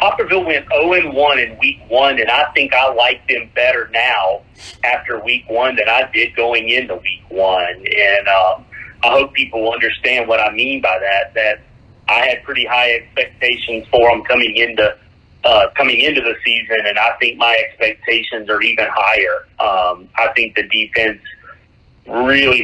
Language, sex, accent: English, male, American